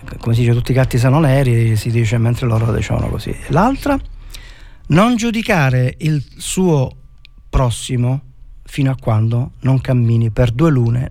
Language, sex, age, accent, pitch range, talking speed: Italian, male, 40-59, native, 125-160 Hz, 155 wpm